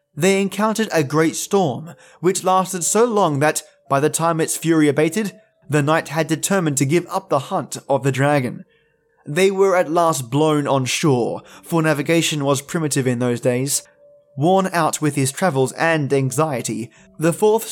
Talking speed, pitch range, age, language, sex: 175 wpm, 140-195 Hz, 20-39, English, male